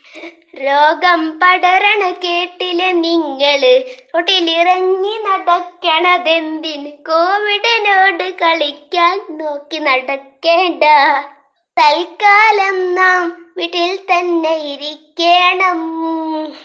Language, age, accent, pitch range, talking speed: Malayalam, 20-39, native, 335-385 Hz, 45 wpm